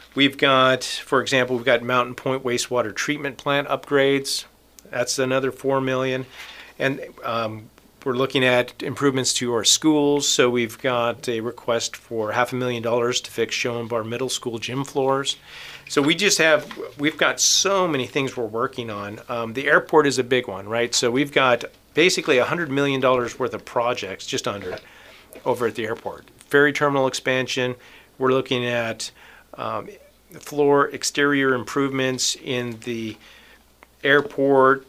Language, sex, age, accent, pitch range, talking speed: English, male, 40-59, American, 120-140 Hz, 155 wpm